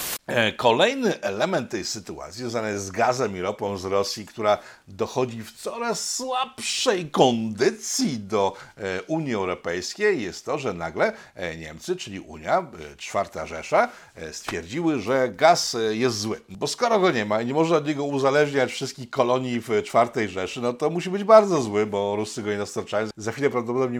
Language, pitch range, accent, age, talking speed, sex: Polish, 105-140 Hz, native, 50-69, 160 wpm, male